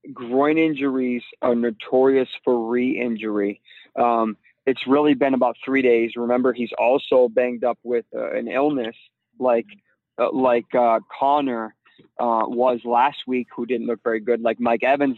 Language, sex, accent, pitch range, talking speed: English, male, American, 120-140 Hz, 155 wpm